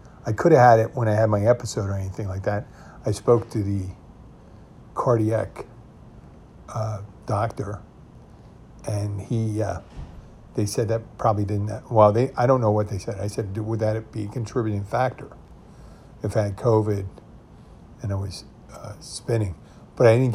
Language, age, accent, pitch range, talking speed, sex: English, 50-69, American, 105-120 Hz, 165 wpm, male